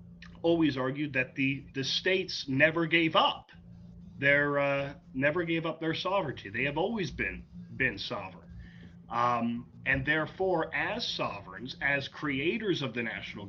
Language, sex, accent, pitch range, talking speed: English, male, American, 120-150 Hz, 140 wpm